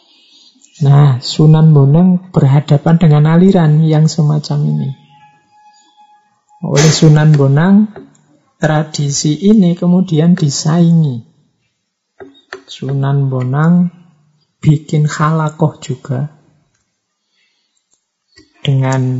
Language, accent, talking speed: Indonesian, native, 70 wpm